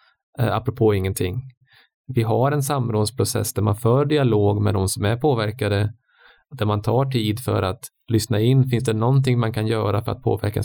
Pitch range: 110-130 Hz